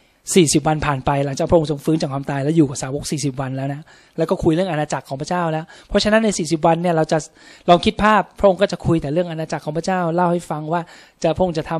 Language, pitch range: Thai, 155-190 Hz